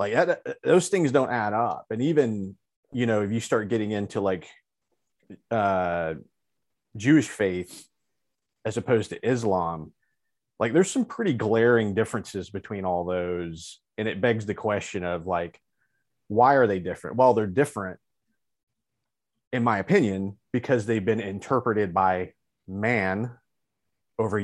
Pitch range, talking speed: 95-125 Hz, 140 wpm